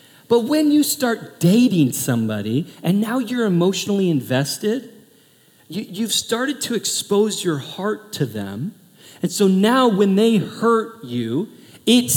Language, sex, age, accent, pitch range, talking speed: English, male, 40-59, American, 150-220 Hz, 135 wpm